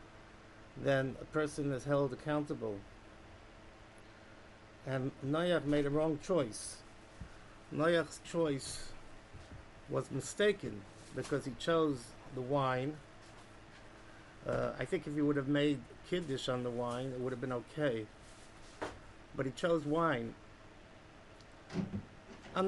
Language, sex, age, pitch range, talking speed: English, male, 50-69, 110-150 Hz, 120 wpm